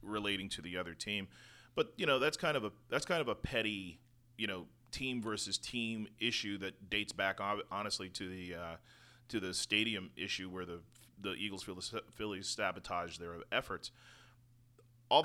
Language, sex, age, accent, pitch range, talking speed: English, male, 30-49, American, 100-120 Hz, 175 wpm